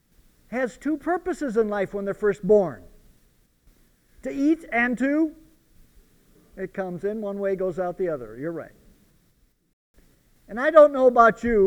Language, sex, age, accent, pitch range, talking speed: English, male, 50-69, American, 160-260 Hz, 155 wpm